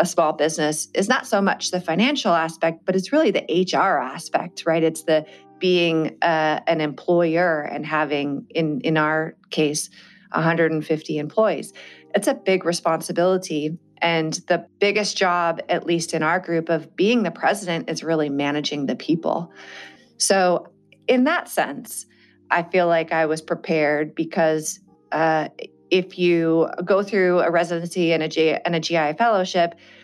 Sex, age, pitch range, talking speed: female, 30-49, 155-190 Hz, 155 wpm